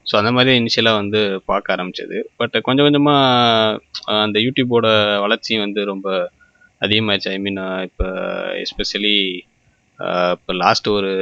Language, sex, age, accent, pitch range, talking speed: Tamil, male, 20-39, native, 100-125 Hz, 125 wpm